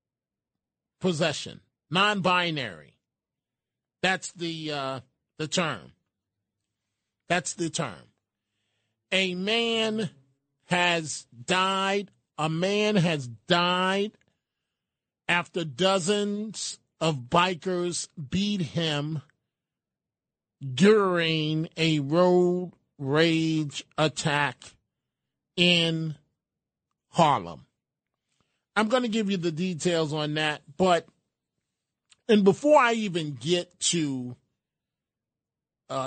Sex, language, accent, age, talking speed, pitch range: male, English, American, 40-59, 80 wpm, 150-185 Hz